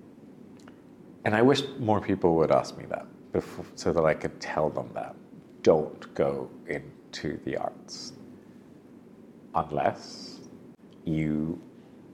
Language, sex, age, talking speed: English, male, 50-69, 115 wpm